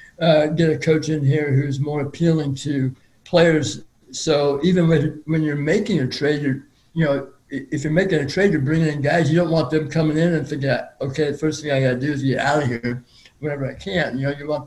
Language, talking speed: English, 230 wpm